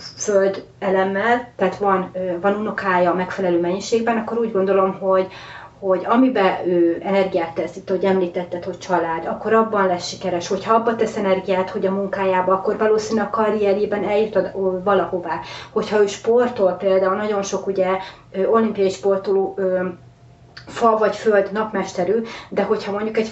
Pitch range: 185-215 Hz